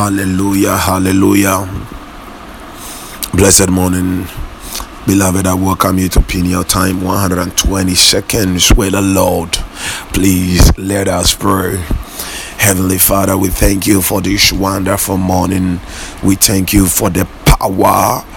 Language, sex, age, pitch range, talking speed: English, male, 30-49, 95-100 Hz, 120 wpm